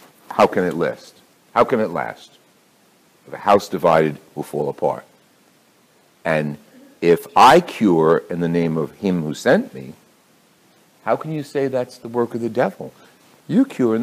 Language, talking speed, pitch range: English, 165 wpm, 110-180 Hz